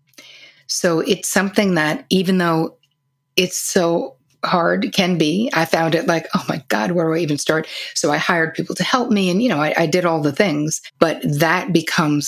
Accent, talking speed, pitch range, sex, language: American, 205 wpm, 150-180 Hz, female, English